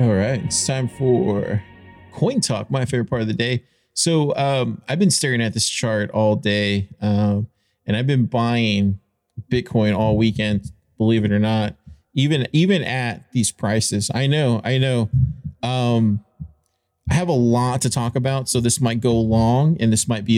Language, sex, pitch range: English, male, 110-145 Hz